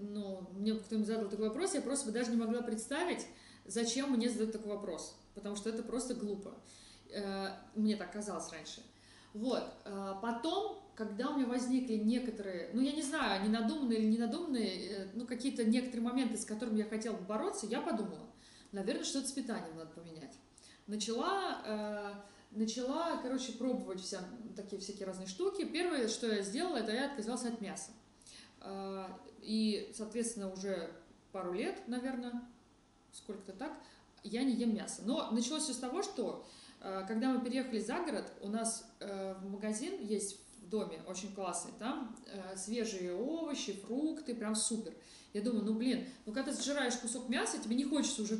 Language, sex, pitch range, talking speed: Russian, female, 205-255 Hz, 160 wpm